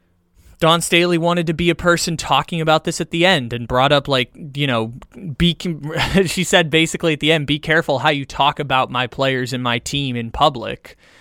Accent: American